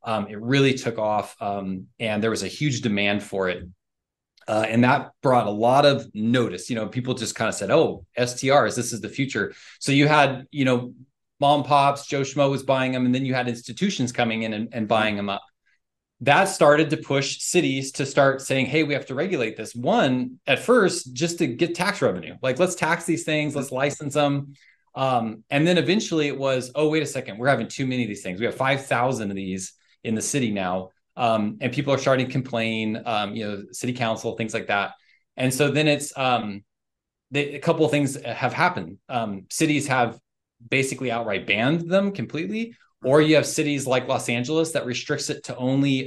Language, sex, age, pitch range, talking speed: English, male, 20-39, 110-140 Hz, 210 wpm